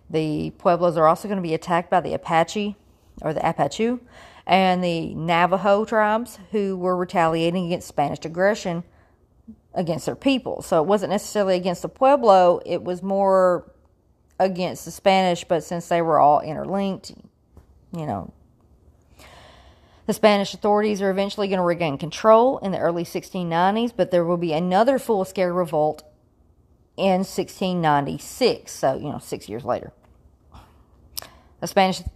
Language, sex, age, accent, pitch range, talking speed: English, female, 40-59, American, 165-195 Hz, 145 wpm